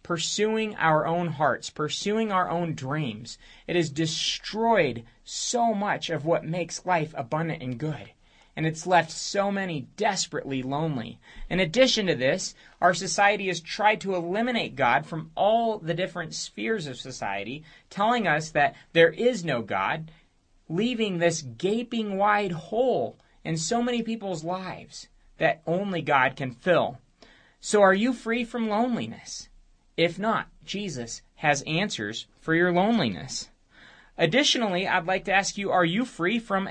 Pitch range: 155-215 Hz